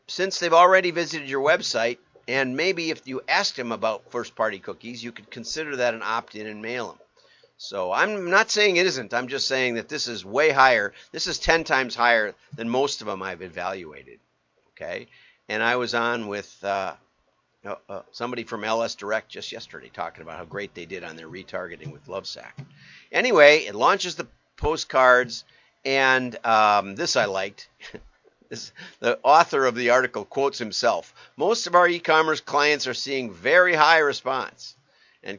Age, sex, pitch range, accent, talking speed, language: 50-69, male, 115-160 Hz, American, 175 wpm, English